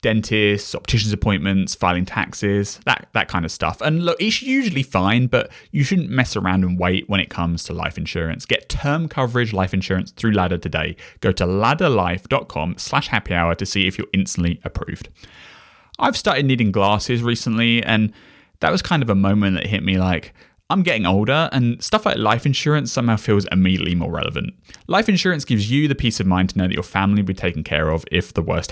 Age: 20-39